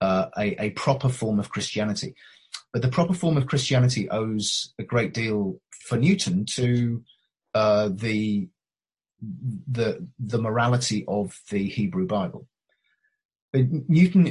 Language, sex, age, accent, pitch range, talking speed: English, male, 30-49, British, 105-140 Hz, 125 wpm